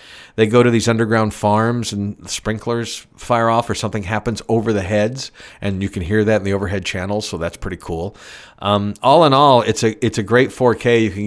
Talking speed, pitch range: 220 wpm, 100-125 Hz